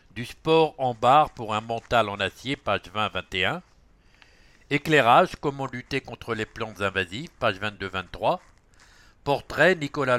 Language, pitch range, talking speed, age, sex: English, 105-135 Hz, 130 wpm, 60-79, male